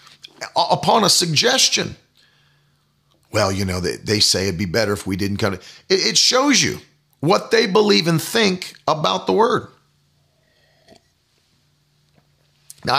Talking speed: 135 wpm